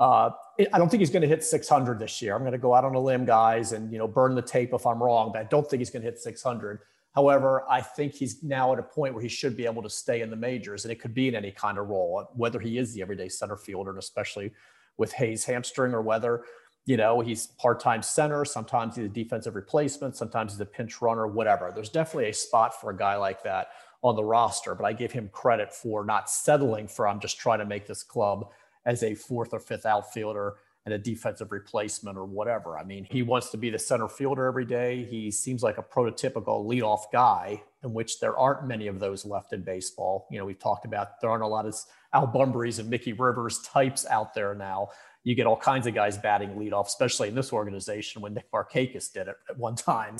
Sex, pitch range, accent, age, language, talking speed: male, 105-125 Hz, American, 40-59, English, 240 wpm